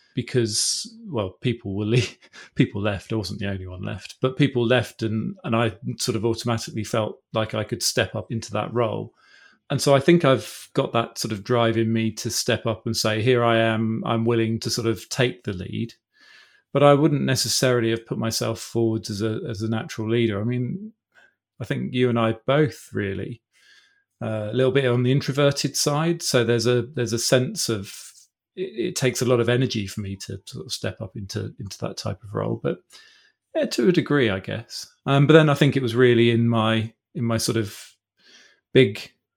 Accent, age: British, 40-59